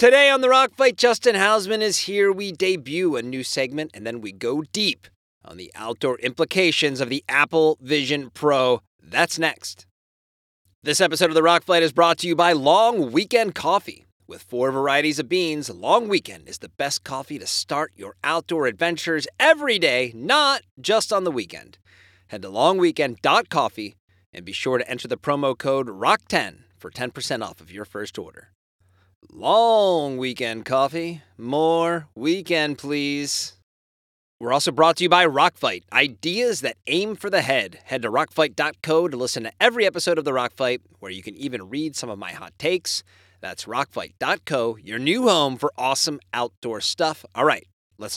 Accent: American